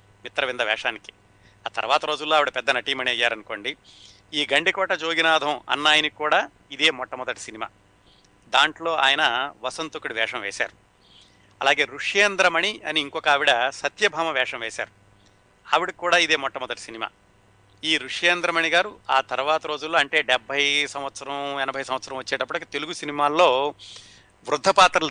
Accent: native